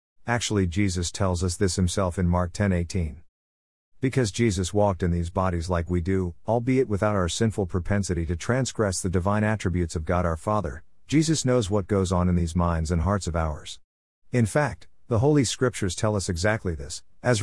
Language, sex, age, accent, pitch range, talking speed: English, male, 50-69, American, 85-110 Hz, 185 wpm